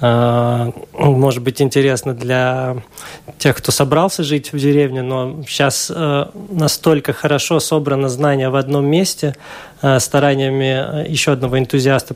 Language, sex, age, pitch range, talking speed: Russian, male, 20-39, 135-155 Hz, 115 wpm